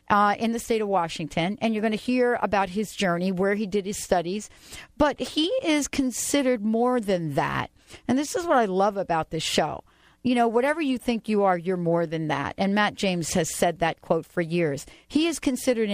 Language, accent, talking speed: English, American, 220 wpm